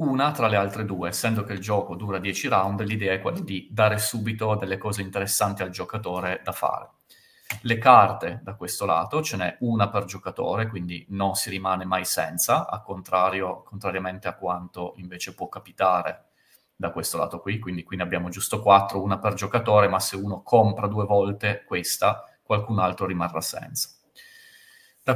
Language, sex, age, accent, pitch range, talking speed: Italian, male, 30-49, native, 95-115 Hz, 180 wpm